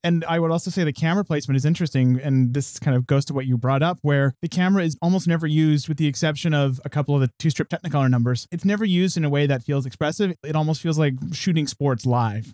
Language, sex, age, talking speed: English, male, 30-49, 265 wpm